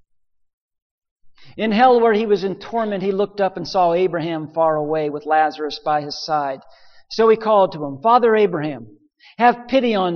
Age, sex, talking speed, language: 50-69, male, 175 wpm, English